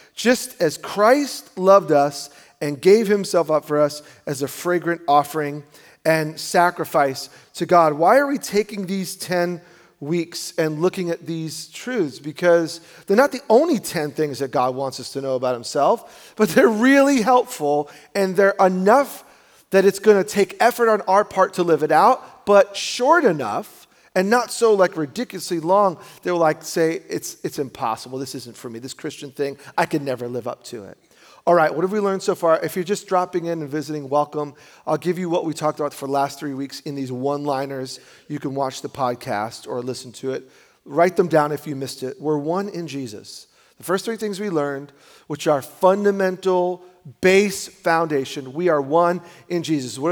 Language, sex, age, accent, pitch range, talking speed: English, male, 40-59, American, 145-190 Hz, 195 wpm